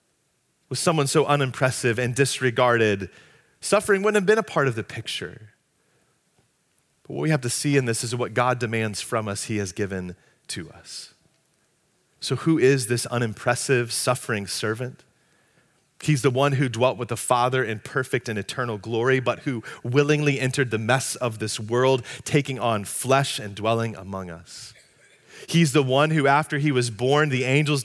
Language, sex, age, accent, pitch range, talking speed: English, male, 30-49, American, 120-165 Hz, 170 wpm